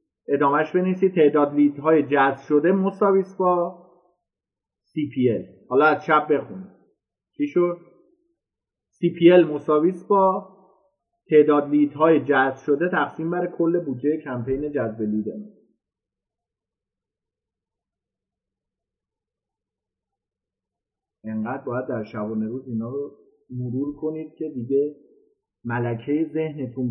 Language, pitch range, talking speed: Persian, 120-165 Hz, 100 wpm